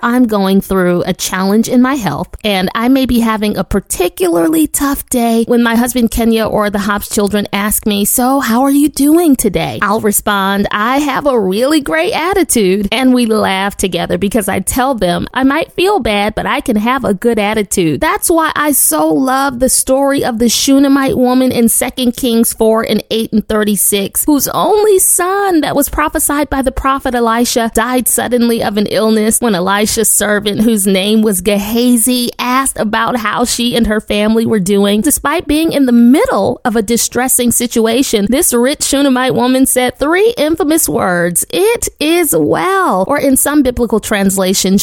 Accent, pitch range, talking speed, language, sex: American, 210-275 Hz, 180 wpm, English, female